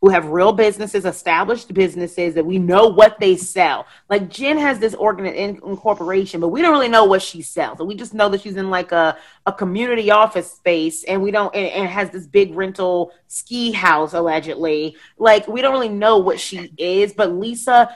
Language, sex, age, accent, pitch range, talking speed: English, female, 30-49, American, 175-215 Hz, 200 wpm